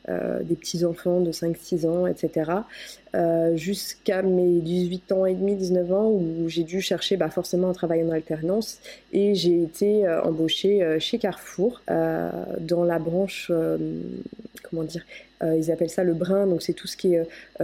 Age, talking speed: 20-39, 185 wpm